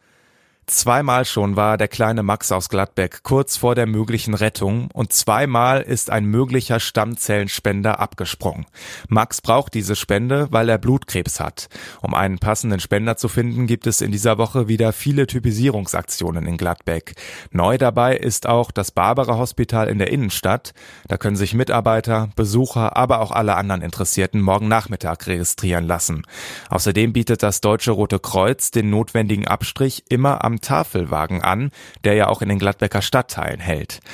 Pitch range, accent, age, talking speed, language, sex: 100-120 Hz, German, 30-49, 155 wpm, German, male